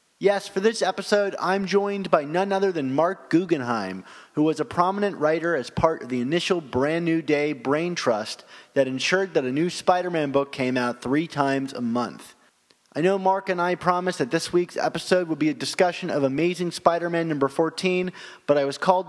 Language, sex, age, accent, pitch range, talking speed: English, male, 30-49, American, 140-180 Hz, 200 wpm